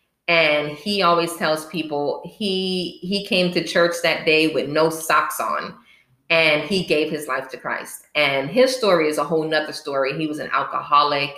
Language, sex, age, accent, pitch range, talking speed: English, female, 20-39, American, 150-190 Hz, 185 wpm